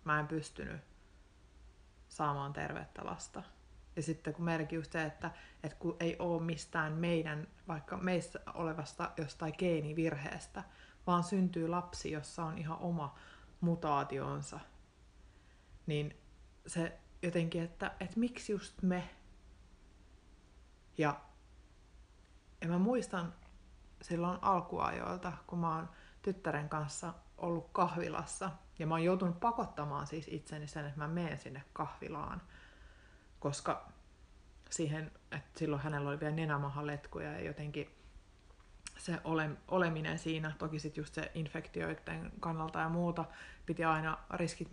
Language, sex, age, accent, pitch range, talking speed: Finnish, female, 30-49, native, 150-175 Hz, 120 wpm